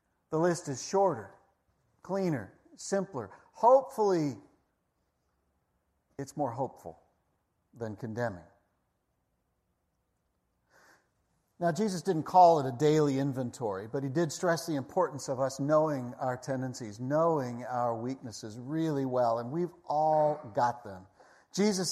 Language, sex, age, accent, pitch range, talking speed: English, male, 50-69, American, 130-205 Hz, 115 wpm